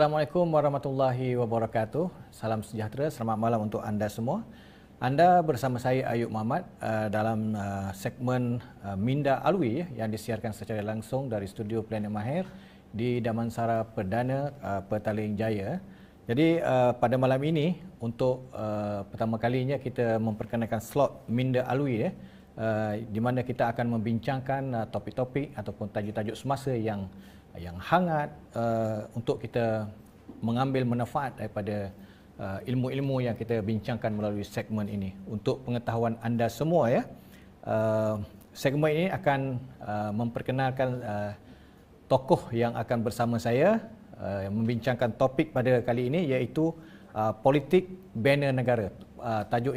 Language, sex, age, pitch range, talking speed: Malay, male, 40-59, 110-135 Hz, 120 wpm